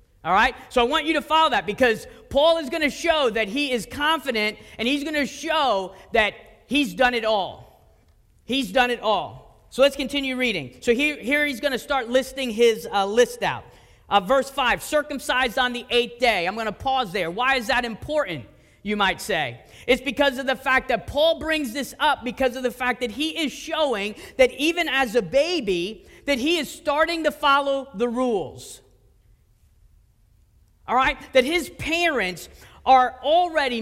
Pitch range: 205-285 Hz